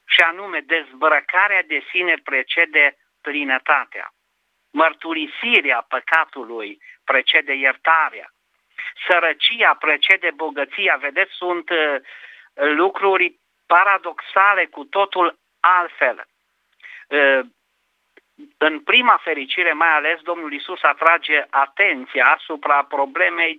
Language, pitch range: Romanian, 135-175 Hz